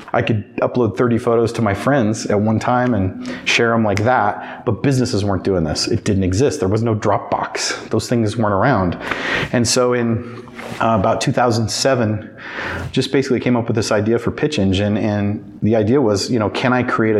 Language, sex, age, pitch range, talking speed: English, male, 30-49, 100-125 Hz, 200 wpm